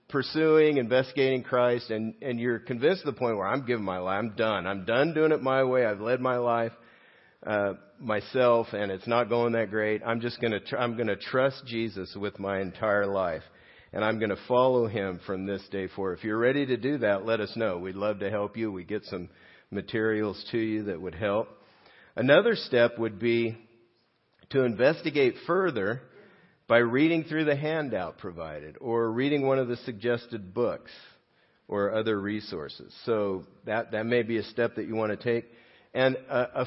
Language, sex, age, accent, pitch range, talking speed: English, male, 50-69, American, 105-130 Hz, 195 wpm